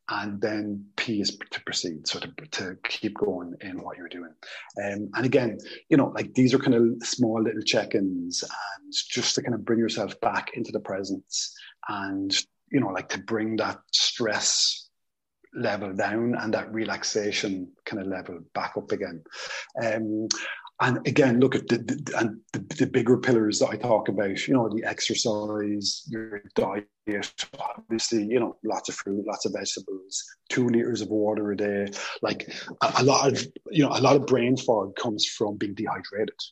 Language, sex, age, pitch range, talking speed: English, male, 30-49, 105-125 Hz, 175 wpm